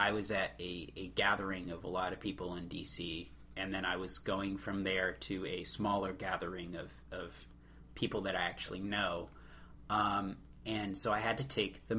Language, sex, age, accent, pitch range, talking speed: English, male, 30-49, American, 90-115 Hz, 195 wpm